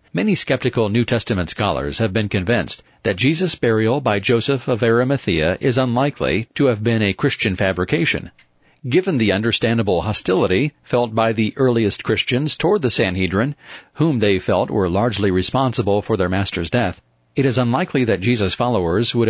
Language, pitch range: English, 105-135 Hz